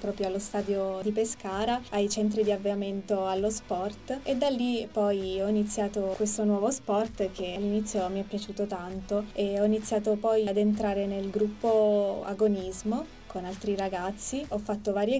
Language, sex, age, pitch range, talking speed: Italian, female, 20-39, 200-215 Hz, 160 wpm